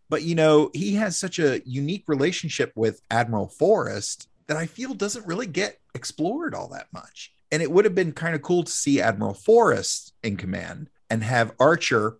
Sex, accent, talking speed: male, American, 190 wpm